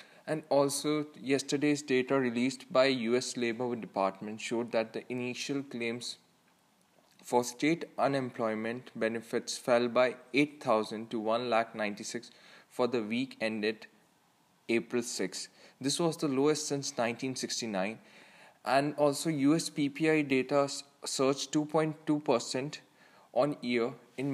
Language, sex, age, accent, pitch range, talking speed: English, male, 20-39, Indian, 120-145 Hz, 115 wpm